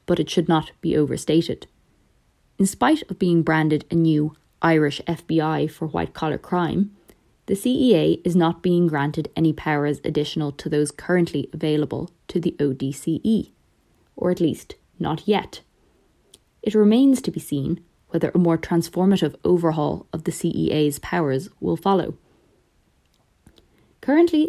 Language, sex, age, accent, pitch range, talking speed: English, female, 20-39, Irish, 155-190 Hz, 135 wpm